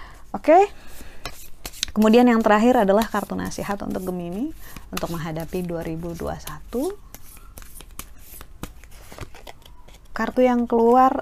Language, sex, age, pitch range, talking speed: Indonesian, female, 20-39, 160-215 Hz, 85 wpm